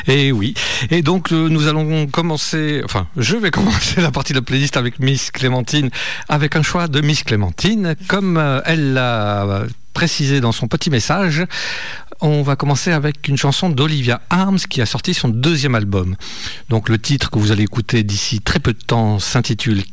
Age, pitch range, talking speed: 50-69, 110-150 Hz, 180 wpm